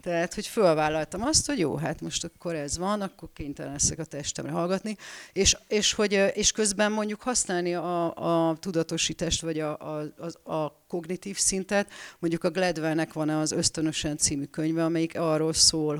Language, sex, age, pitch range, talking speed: Hungarian, female, 40-59, 155-180 Hz, 170 wpm